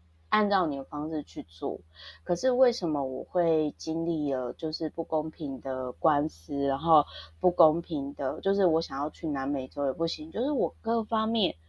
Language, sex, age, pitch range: Chinese, female, 20-39, 135-175 Hz